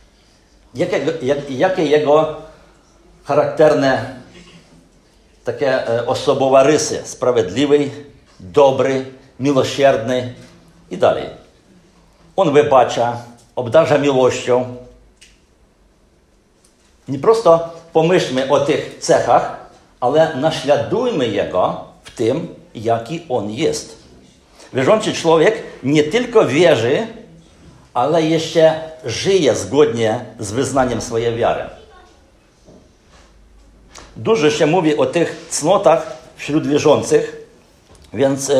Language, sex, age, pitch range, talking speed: Polish, male, 50-69, 125-155 Hz, 80 wpm